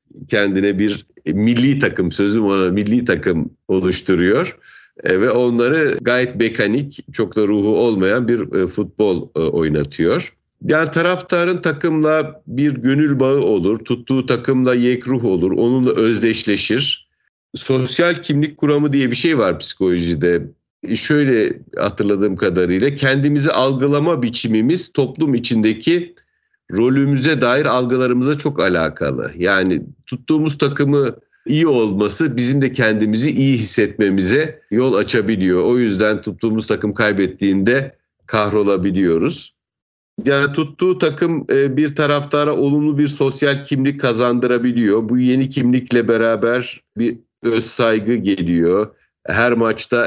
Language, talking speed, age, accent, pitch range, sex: Turkish, 110 wpm, 50-69, native, 105-140 Hz, male